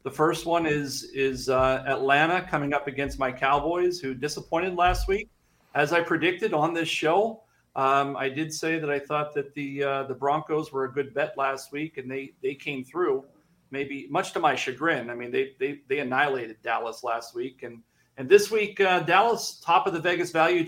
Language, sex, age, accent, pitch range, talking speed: English, male, 40-59, American, 130-165 Hz, 205 wpm